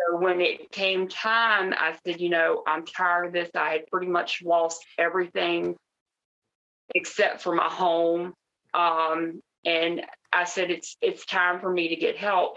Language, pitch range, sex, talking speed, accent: English, 165-200 Hz, female, 160 wpm, American